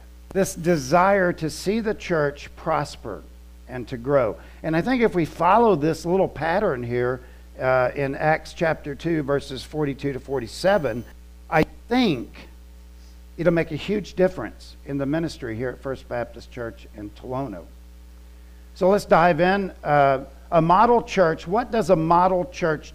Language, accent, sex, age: English, American, male, 50-69